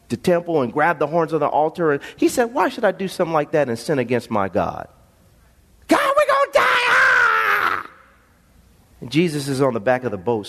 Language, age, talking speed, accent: English, 40-59, 225 wpm, American